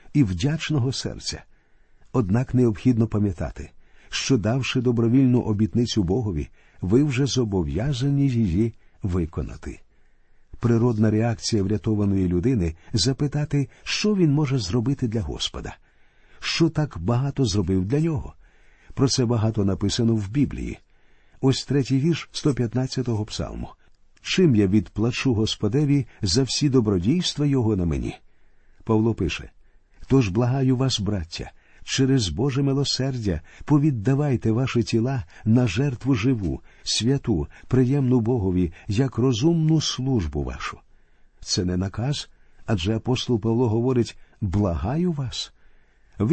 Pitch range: 100-135 Hz